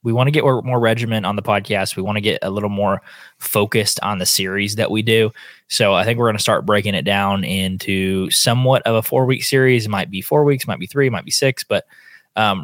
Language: English